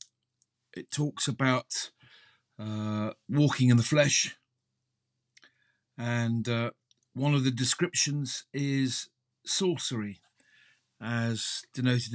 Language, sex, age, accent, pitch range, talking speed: English, male, 50-69, British, 120-140 Hz, 90 wpm